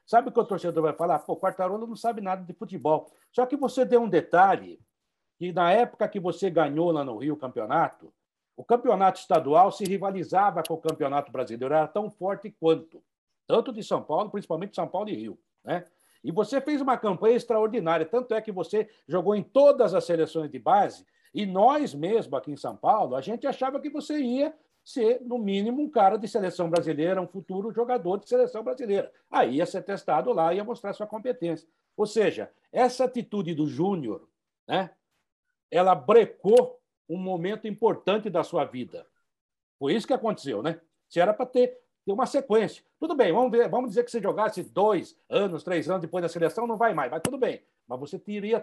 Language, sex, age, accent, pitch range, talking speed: Portuguese, male, 60-79, Brazilian, 170-235 Hz, 195 wpm